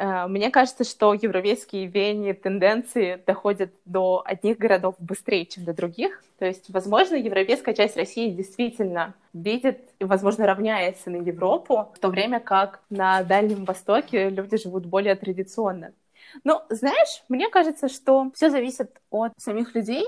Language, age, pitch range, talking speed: Russian, 20-39, 195-245 Hz, 145 wpm